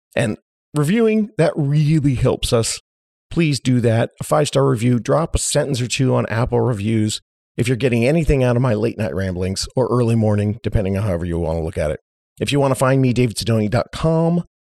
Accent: American